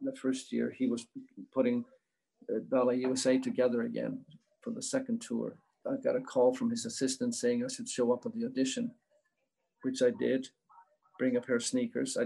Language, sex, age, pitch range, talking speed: English, male, 50-69, 165-260 Hz, 185 wpm